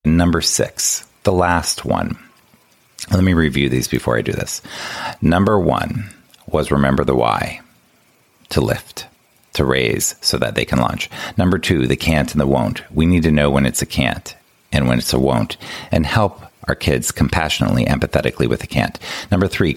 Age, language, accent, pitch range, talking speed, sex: 40-59, English, American, 70-85 Hz, 180 wpm, male